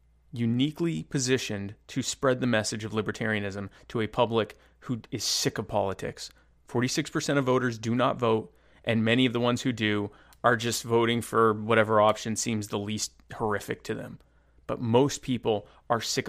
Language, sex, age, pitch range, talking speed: English, male, 30-49, 105-125 Hz, 170 wpm